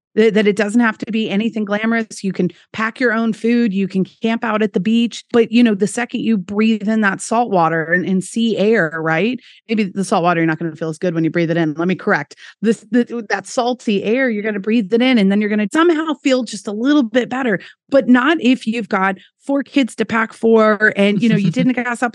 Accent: American